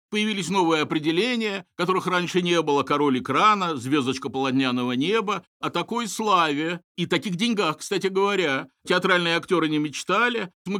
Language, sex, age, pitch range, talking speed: Russian, male, 50-69, 150-190 Hz, 140 wpm